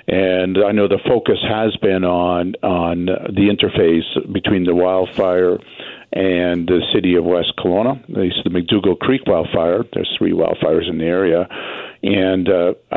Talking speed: 150 wpm